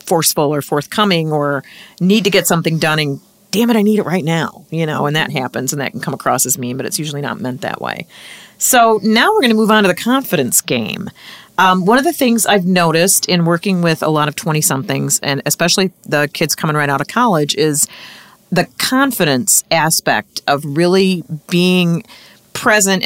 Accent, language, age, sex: American, English, 40-59, female